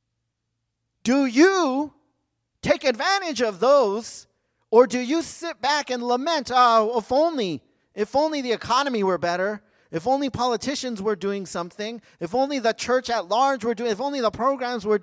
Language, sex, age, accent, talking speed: English, male, 30-49, American, 165 wpm